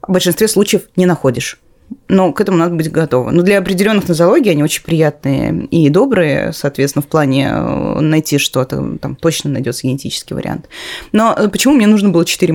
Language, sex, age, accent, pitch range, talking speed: Russian, female, 20-39, native, 150-190 Hz, 170 wpm